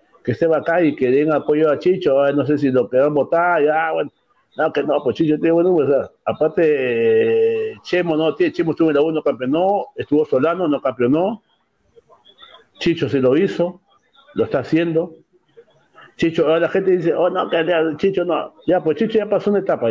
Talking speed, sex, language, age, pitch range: 195 wpm, male, Spanish, 60-79, 160-205 Hz